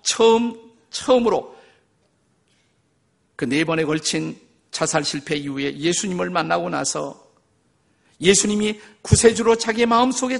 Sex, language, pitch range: male, Korean, 140-195 Hz